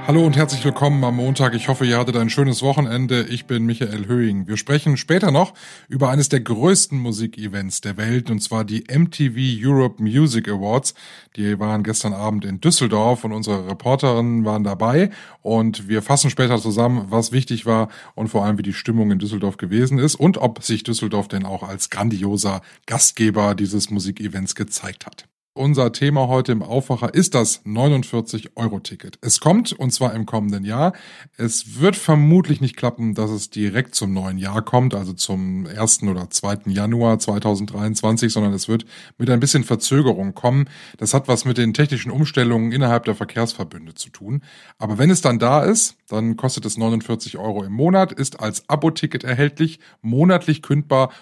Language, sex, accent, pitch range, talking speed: German, male, German, 110-140 Hz, 175 wpm